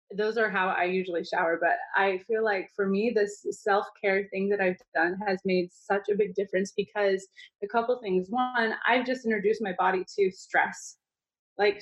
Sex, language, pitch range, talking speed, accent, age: female, English, 180-220 Hz, 195 wpm, American, 20-39